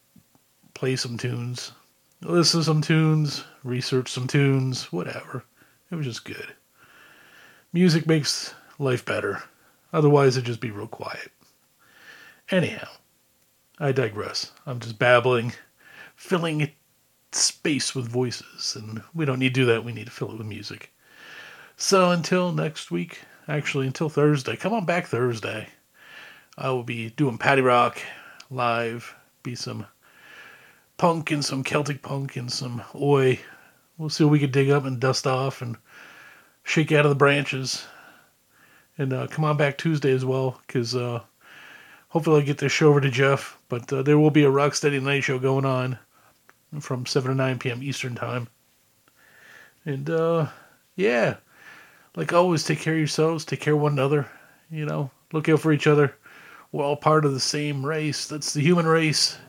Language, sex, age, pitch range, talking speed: English, male, 40-59, 125-150 Hz, 160 wpm